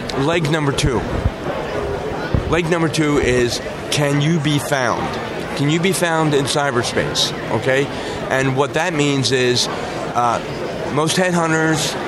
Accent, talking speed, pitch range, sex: American, 130 wpm, 125-160 Hz, male